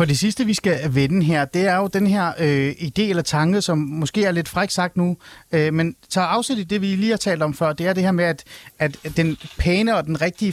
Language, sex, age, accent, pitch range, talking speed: Danish, male, 30-49, native, 150-195 Hz, 255 wpm